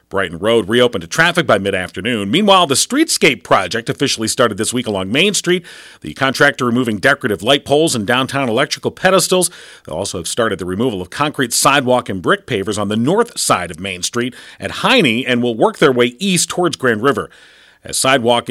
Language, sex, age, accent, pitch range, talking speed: English, male, 40-59, American, 115-160 Hz, 195 wpm